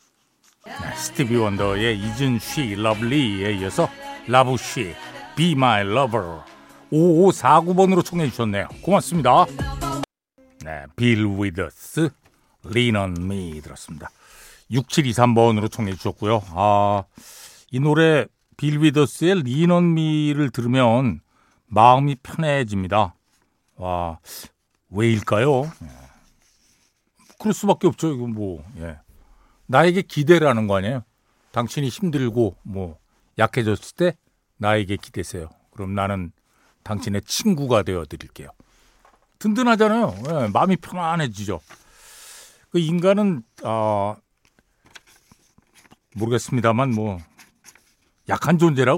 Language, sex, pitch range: Korean, male, 100-160 Hz